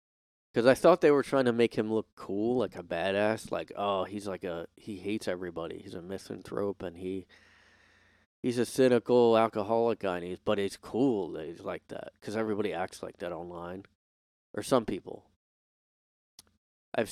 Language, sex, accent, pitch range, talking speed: English, male, American, 95-120 Hz, 180 wpm